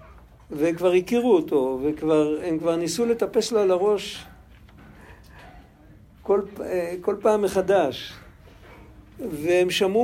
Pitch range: 170-255 Hz